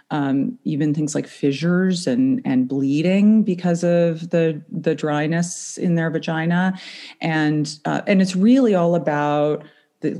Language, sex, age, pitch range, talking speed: English, female, 40-59, 145-200 Hz, 140 wpm